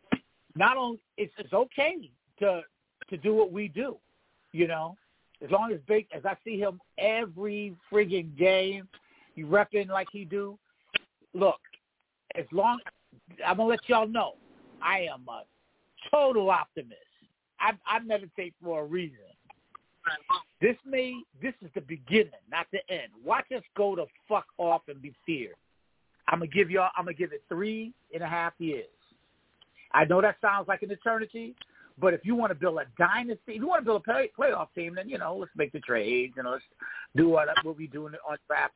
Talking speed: 185 wpm